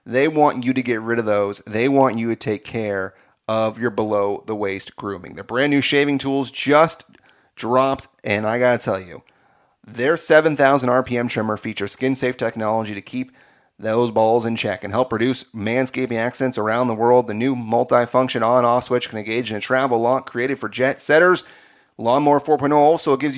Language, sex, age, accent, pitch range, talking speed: English, male, 30-49, American, 115-140 Hz, 190 wpm